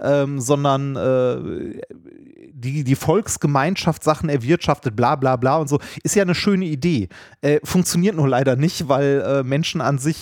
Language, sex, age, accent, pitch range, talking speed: German, male, 30-49, German, 135-165 Hz, 165 wpm